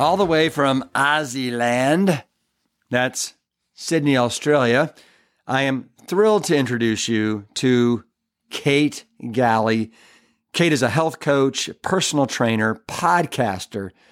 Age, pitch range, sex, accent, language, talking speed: 50-69, 110-135 Hz, male, American, English, 105 wpm